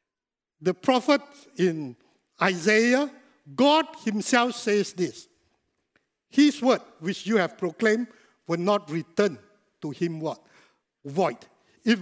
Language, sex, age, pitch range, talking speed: English, male, 60-79, 185-275 Hz, 110 wpm